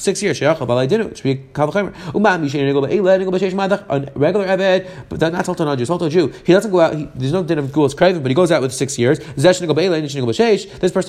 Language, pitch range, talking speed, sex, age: English, 140-185 Hz, 200 wpm, male, 30-49